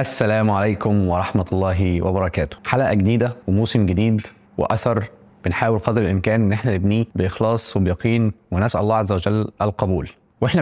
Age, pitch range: 20-39, 95-115 Hz